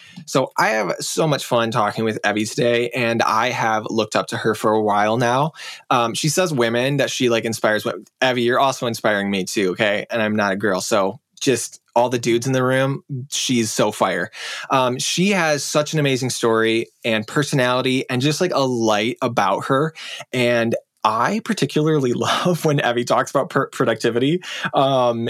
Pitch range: 110-135 Hz